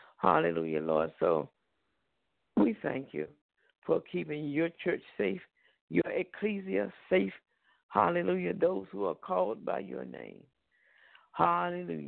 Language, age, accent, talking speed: English, 60-79, American, 115 wpm